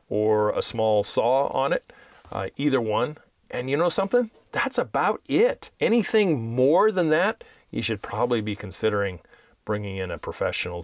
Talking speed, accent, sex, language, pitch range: 160 wpm, American, male, English, 110-165 Hz